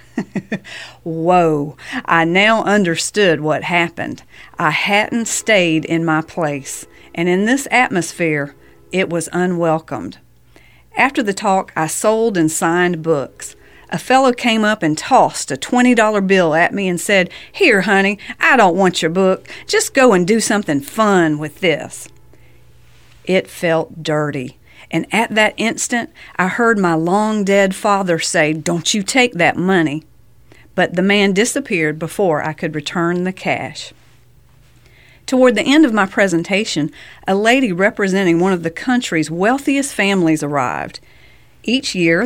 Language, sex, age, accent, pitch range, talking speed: English, female, 50-69, American, 165-220 Hz, 145 wpm